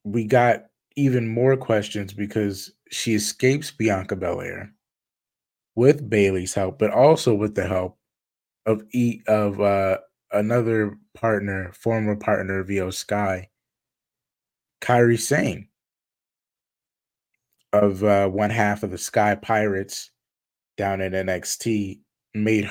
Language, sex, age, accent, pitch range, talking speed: English, male, 20-39, American, 100-120 Hz, 110 wpm